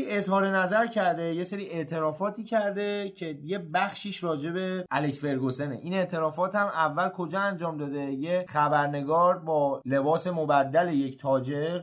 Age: 30-49